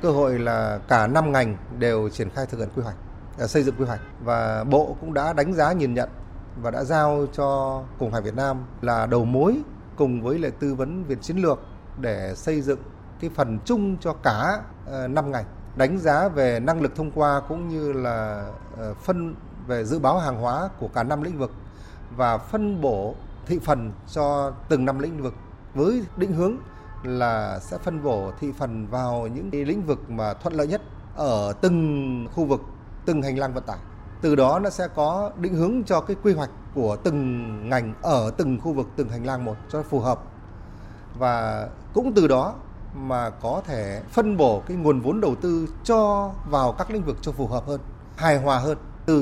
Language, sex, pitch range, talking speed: Vietnamese, male, 115-155 Hz, 200 wpm